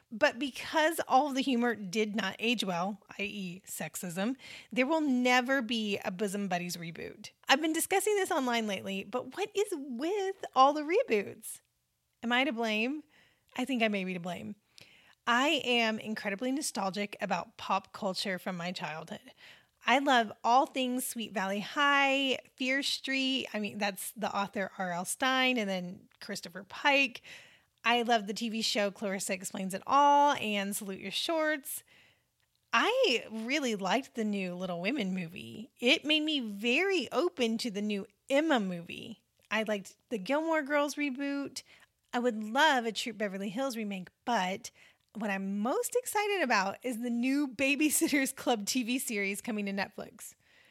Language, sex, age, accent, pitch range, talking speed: English, female, 30-49, American, 200-275 Hz, 160 wpm